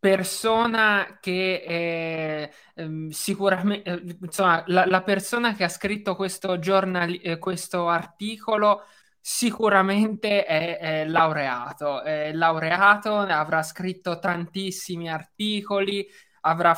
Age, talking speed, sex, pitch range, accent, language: 20-39, 85 wpm, male, 170-205 Hz, native, Italian